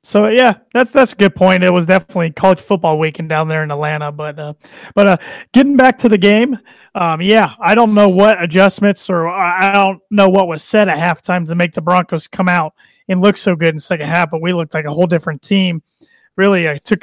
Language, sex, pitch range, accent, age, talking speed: English, male, 170-200 Hz, American, 30-49, 235 wpm